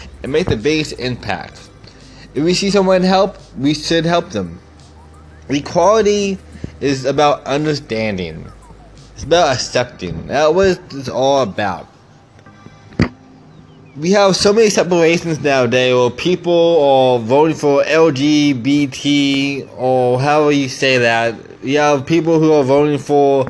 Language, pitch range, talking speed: English, 120-160 Hz, 130 wpm